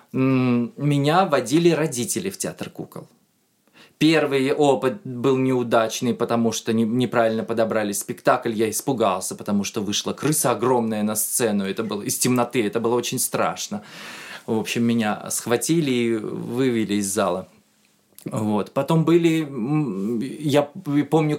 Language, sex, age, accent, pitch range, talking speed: Russian, male, 20-39, native, 115-165 Hz, 125 wpm